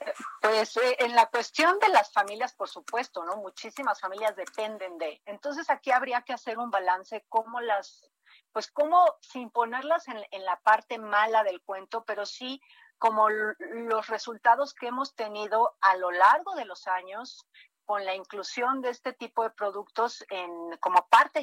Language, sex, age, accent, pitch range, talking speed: Spanish, female, 40-59, Mexican, 195-240 Hz, 170 wpm